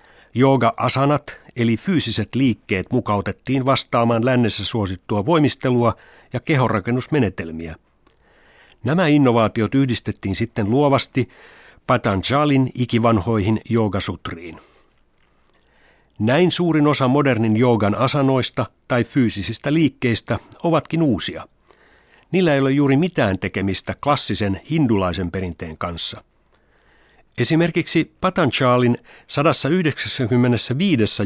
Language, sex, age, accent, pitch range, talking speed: Finnish, male, 60-79, native, 105-135 Hz, 85 wpm